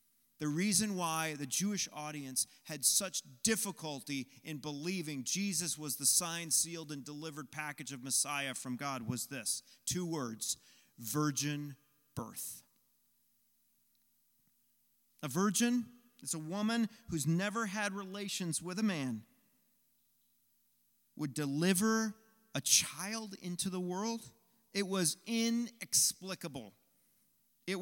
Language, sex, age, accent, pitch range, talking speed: English, male, 40-59, American, 150-205 Hz, 110 wpm